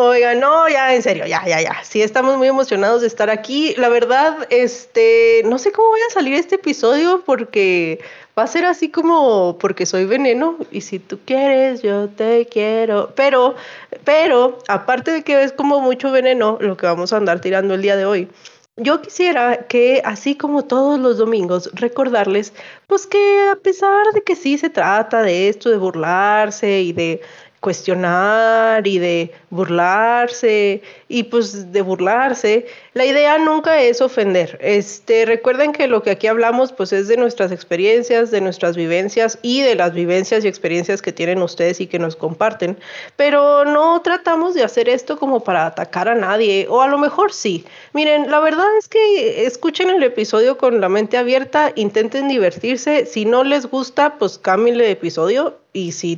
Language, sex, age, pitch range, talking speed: Spanish, female, 30-49, 200-290 Hz, 175 wpm